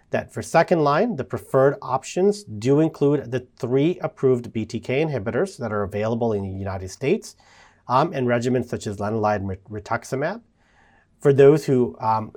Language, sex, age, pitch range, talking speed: English, male, 40-59, 105-140 Hz, 160 wpm